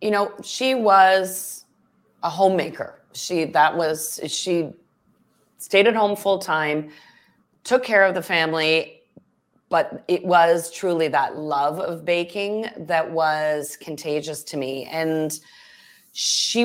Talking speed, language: 125 wpm, English